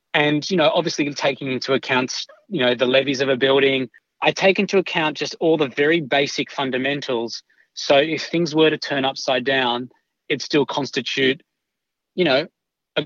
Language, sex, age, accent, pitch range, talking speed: English, male, 30-49, Australian, 130-165 Hz, 175 wpm